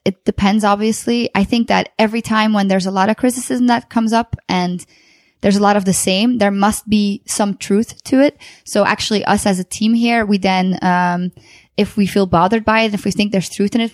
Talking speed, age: 235 wpm, 20-39